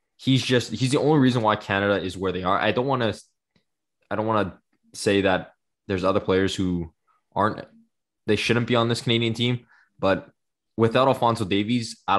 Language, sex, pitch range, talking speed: English, male, 95-115 Hz, 190 wpm